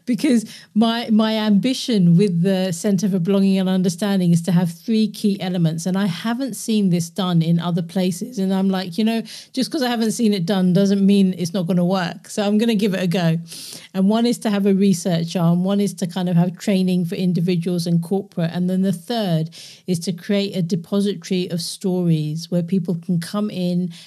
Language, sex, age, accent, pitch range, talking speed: English, female, 40-59, British, 175-210 Hz, 220 wpm